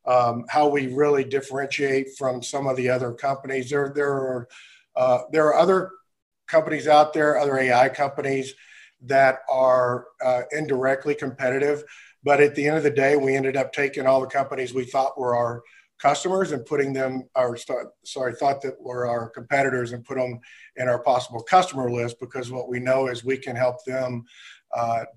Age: 50-69